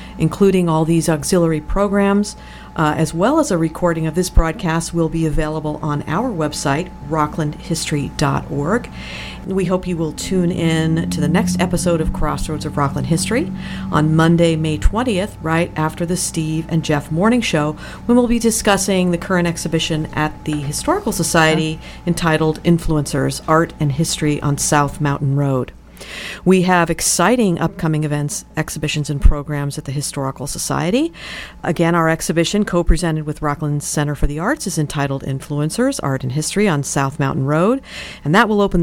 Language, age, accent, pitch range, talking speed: English, 50-69, American, 150-175 Hz, 160 wpm